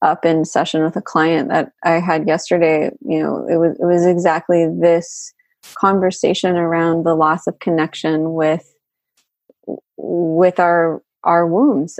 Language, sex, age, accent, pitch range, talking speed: English, female, 20-39, American, 165-185 Hz, 145 wpm